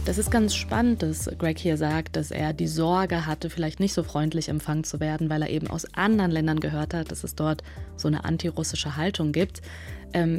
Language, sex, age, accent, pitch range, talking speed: German, female, 20-39, German, 155-195 Hz, 215 wpm